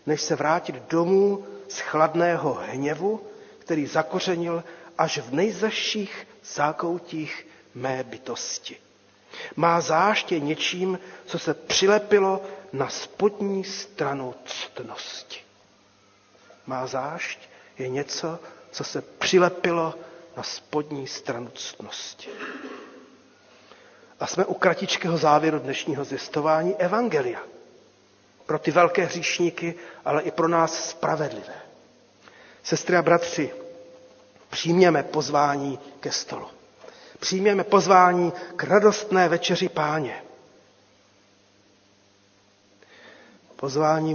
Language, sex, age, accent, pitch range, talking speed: Czech, male, 40-59, native, 150-180 Hz, 90 wpm